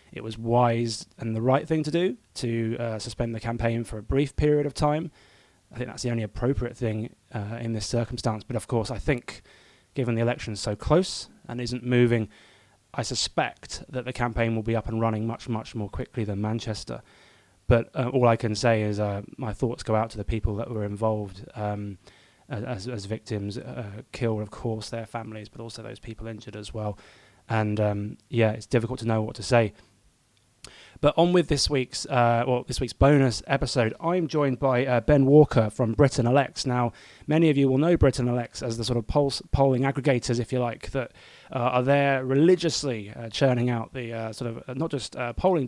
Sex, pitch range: male, 115-135 Hz